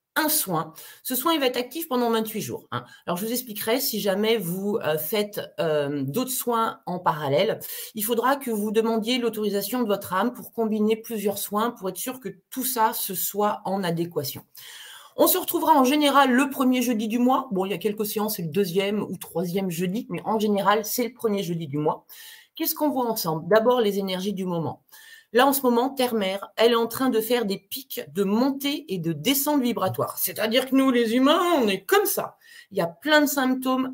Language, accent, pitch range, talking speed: French, French, 190-260 Hz, 215 wpm